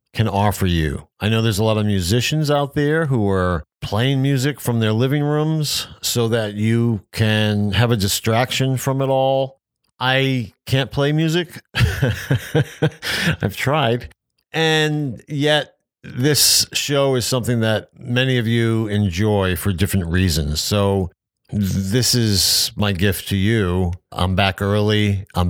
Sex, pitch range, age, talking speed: male, 95-125 Hz, 50-69, 145 wpm